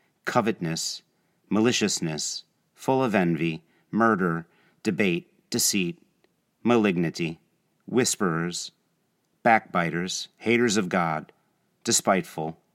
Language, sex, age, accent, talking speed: English, male, 50-69, American, 70 wpm